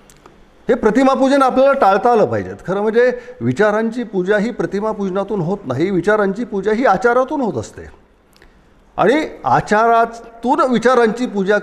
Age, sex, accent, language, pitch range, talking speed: 50-69, male, native, Marathi, 175-245 Hz, 125 wpm